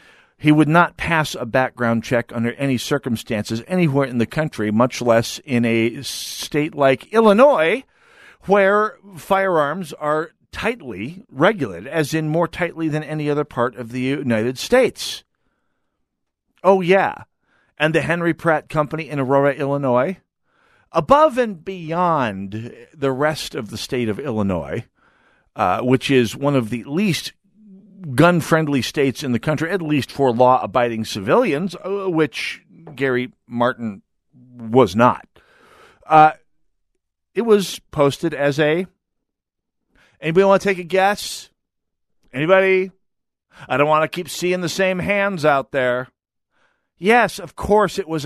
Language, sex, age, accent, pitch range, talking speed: English, male, 50-69, American, 125-175 Hz, 135 wpm